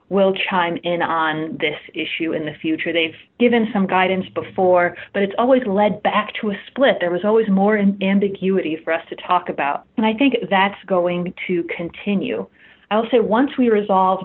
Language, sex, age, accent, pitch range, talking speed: English, female, 30-49, American, 180-235 Hz, 190 wpm